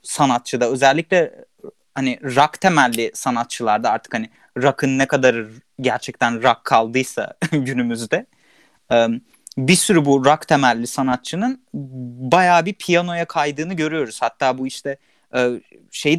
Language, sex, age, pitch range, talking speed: Turkish, male, 30-49, 135-210 Hz, 110 wpm